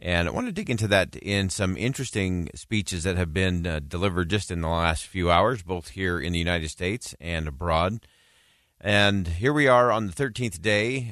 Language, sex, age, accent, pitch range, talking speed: English, male, 40-59, American, 85-105 Hz, 205 wpm